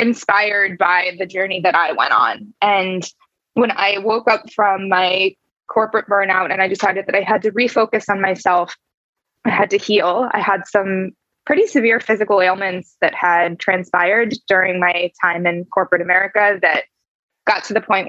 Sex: female